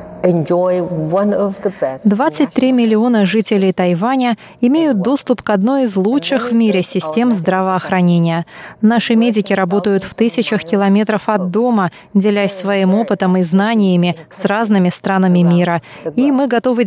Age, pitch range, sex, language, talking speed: 20-39, 185-235 Hz, female, Russian, 120 wpm